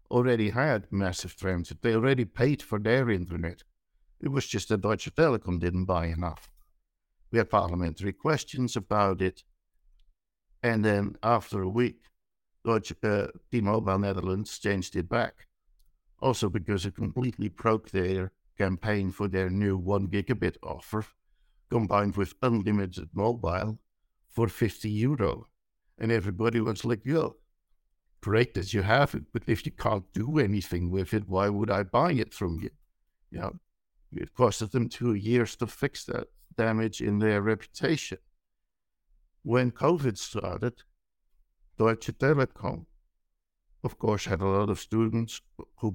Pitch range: 95-120 Hz